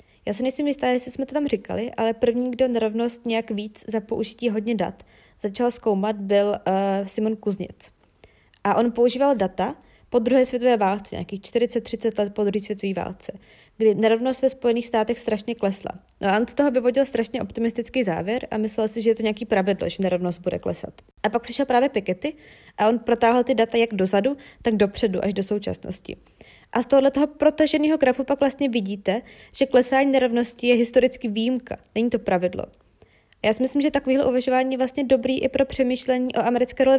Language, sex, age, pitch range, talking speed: Czech, female, 20-39, 205-255 Hz, 195 wpm